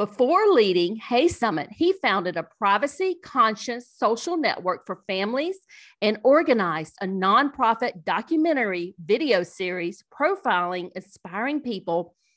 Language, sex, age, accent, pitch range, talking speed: English, female, 50-69, American, 195-275 Hz, 105 wpm